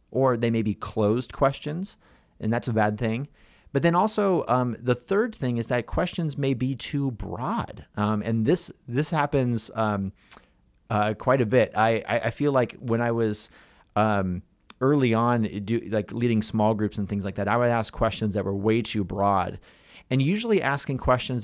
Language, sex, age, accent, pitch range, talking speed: English, male, 30-49, American, 105-135 Hz, 185 wpm